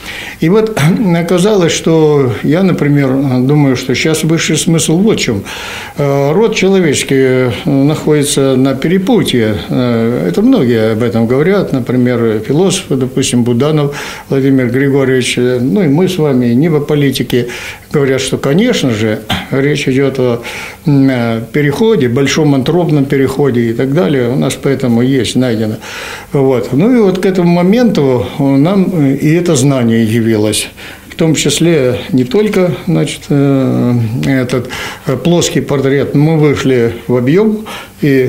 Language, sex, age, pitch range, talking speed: Russian, male, 60-79, 125-165 Hz, 135 wpm